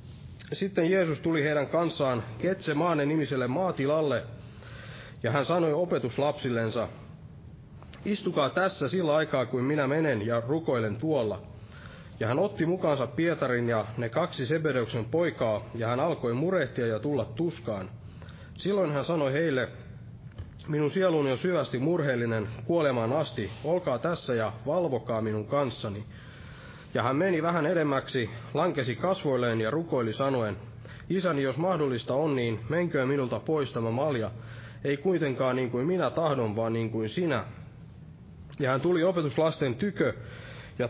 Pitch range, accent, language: 115-160 Hz, native, Finnish